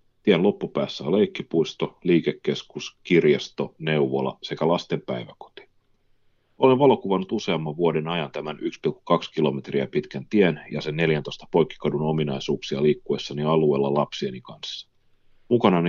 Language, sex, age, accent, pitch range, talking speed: Finnish, male, 40-59, native, 80-105 Hz, 110 wpm